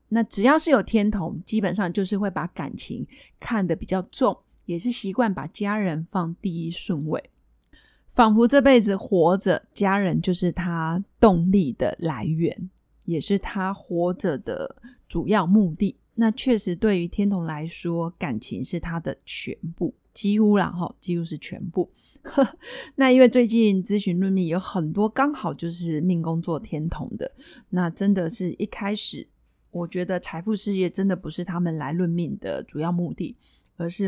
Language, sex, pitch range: Chinese, female, 175-215 Hz